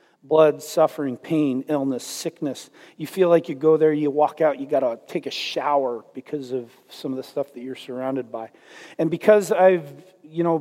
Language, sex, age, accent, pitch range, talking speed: English, male, 40-59, American, 150-180 Hz, 190 wpm